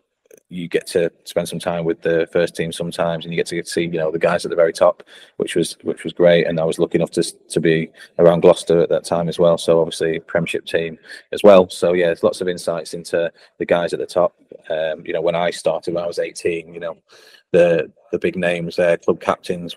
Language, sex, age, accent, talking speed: English, male, 20-39, British, 250 wpm